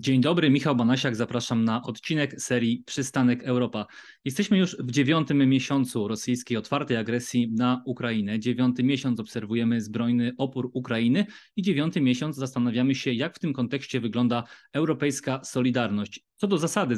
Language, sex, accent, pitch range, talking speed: Polish, male, native, 120-140 Hz, 145 wpm